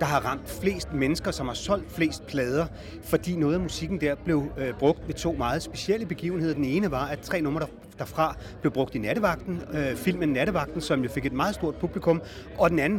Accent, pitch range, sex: native, 140-180 Hz, male